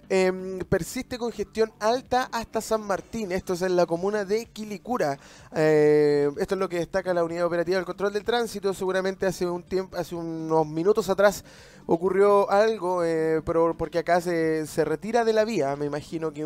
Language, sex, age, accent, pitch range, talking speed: Spanish, male, 20-39, Argentinian, 175-225 Hz, 180 wpm